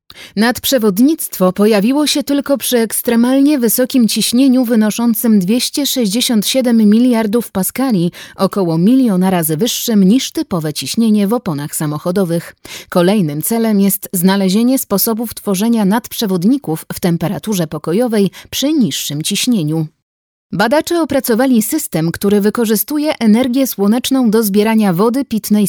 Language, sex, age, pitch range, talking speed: Polish, female, 30-49, 185-240 Hz, 105 wpm